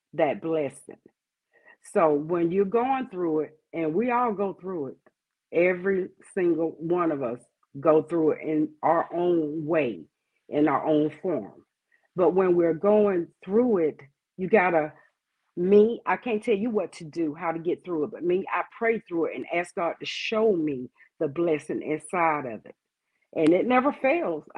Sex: female